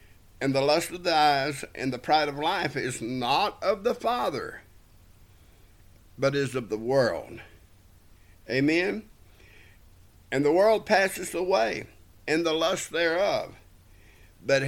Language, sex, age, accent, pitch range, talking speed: English, male, 60-79, American, 110-160 Hz, 130 wpm